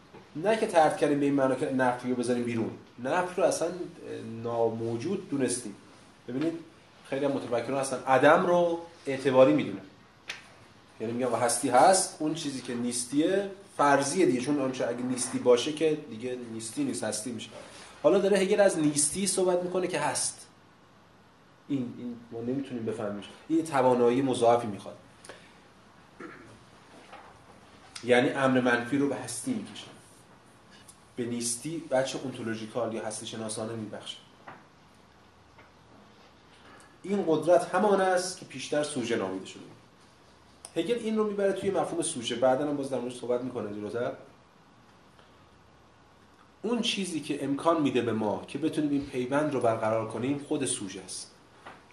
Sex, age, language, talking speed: male, 30-49, Persian, 140 wpm